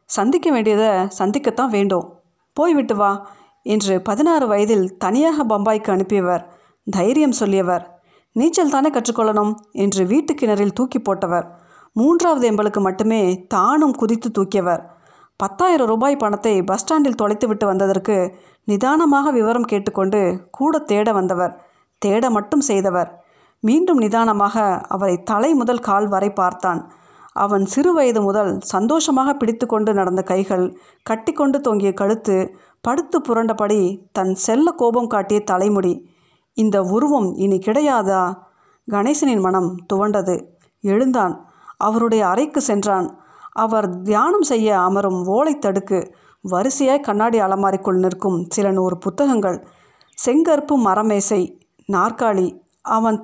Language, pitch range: Tamil, 190-250 Hz